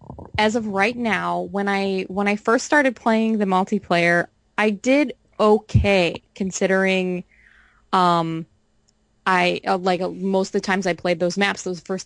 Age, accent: 20-39, American